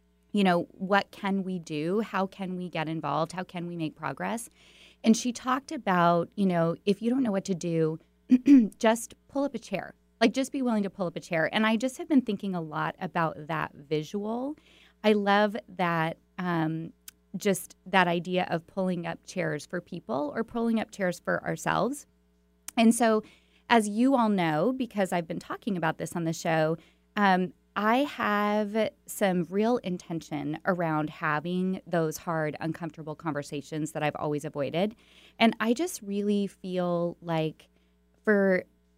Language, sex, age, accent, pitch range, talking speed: English, female, 20-39, American, 160-215 Hz, 170 wpm